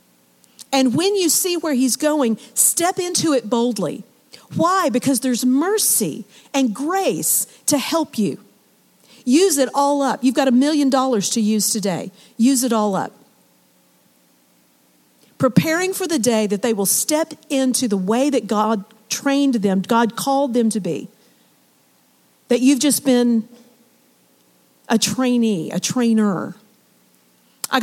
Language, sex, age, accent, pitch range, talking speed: English, female, 50-69, American, 180-260 Hz, 140 wpm